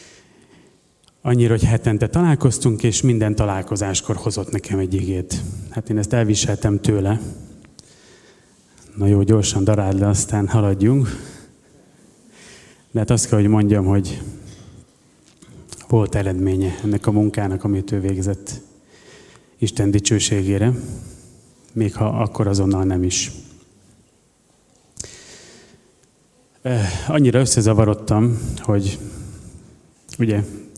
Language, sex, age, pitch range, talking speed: Hungarian, male, 30-49, 100-115 Hz, 95 wpm